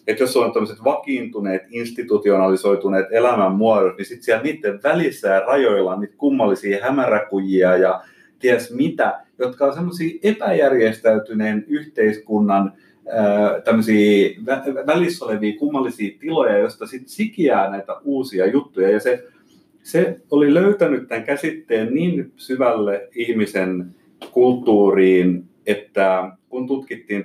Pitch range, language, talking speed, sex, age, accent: 100-135 Hz, Finnish, 115 wpm, male, 30-49, native